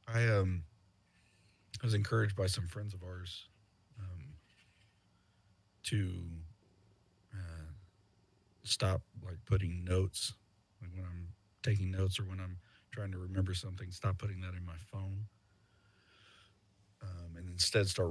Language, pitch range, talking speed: English, 95-105 Hz, 125 wpm